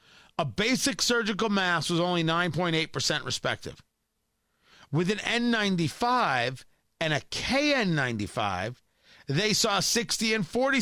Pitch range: 145-210 Hz